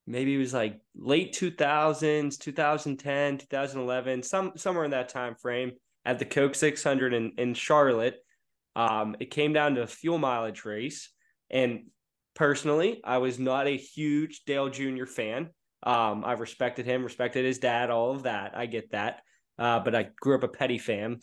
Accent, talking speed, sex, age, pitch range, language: American, 170 wpm, male, 20-39, 125-150 Hz, English